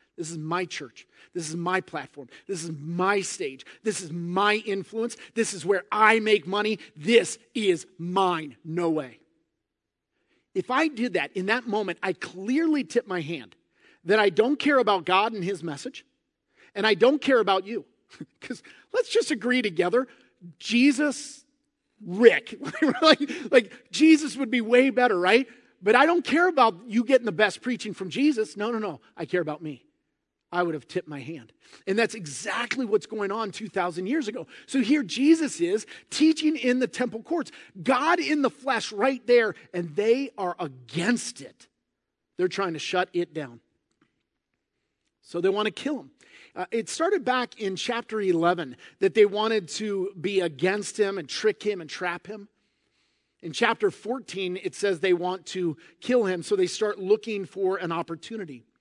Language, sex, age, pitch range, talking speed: English, male, 40-59, 180-250 Hz, 175 wpm